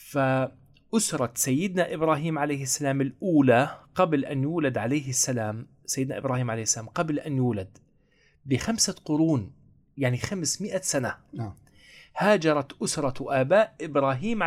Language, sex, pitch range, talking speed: Arabic, male, 130-185 Hz, 110 wpm